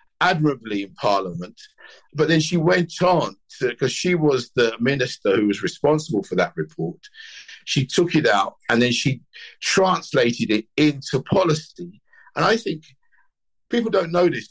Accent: British